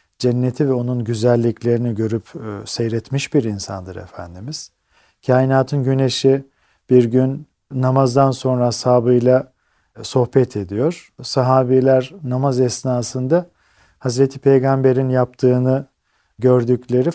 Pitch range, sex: 115-135 Hz, male